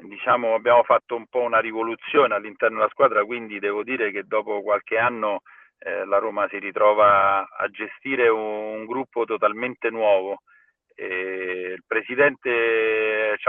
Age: 40-59